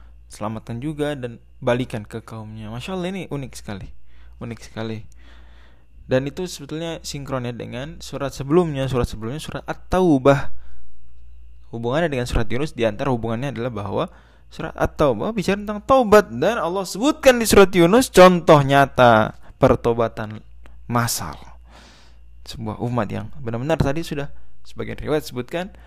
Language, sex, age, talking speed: Indonesian, male, 20-39, 130 wpm